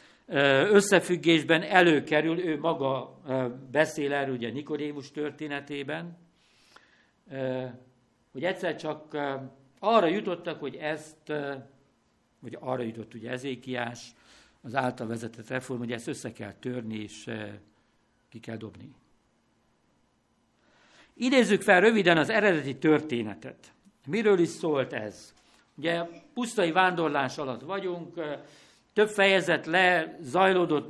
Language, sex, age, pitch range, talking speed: Hungarian, male, 60-79, 130-175 Hz, 105 wpm